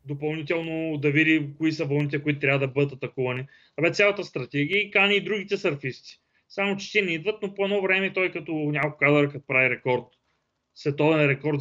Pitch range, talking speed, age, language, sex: 135-170 Hz, 185 wpm, 30-49, Bulgarian, male